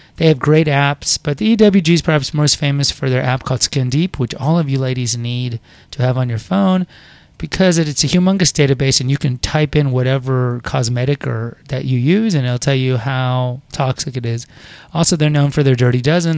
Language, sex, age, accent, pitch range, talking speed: English, male, 30-49, American, 130-165 Hz, 215 wpm